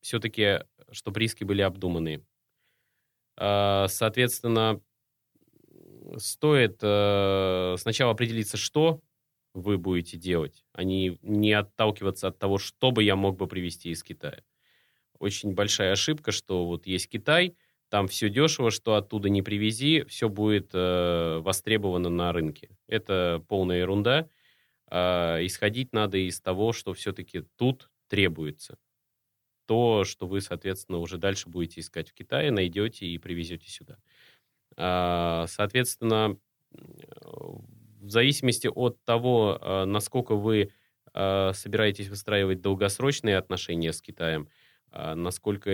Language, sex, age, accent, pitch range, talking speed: Russian, male, 20-39, native, 90-110 Hz, 110 wpm